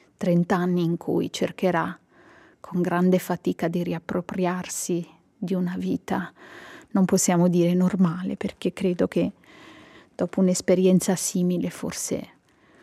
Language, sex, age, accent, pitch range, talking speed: Italian, female, 30-49, native, 175-200 Hz, 110 wpm